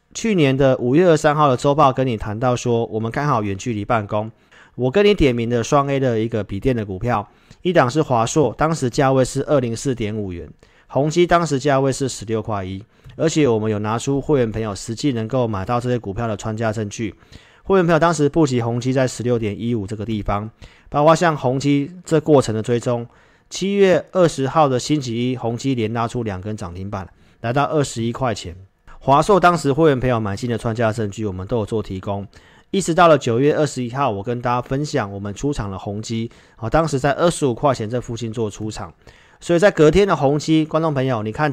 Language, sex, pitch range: Chinese, male, 110-145 Hz